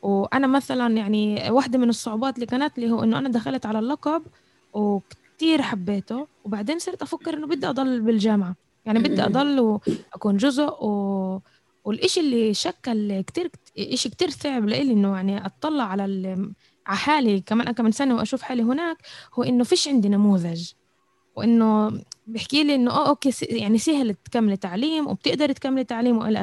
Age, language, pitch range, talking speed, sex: 10-29, Arabic, 200-265 Hz, 155 wpm, female